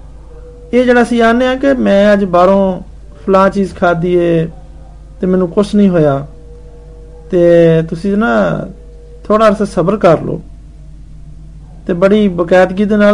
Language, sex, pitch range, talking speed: Hindi, male, 160-215 Hz, 85 wpm